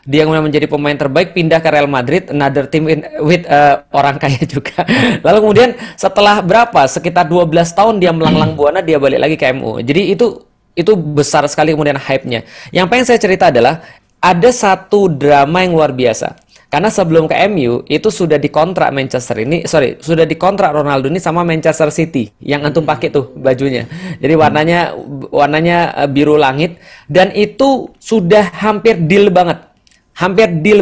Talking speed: 165 wpm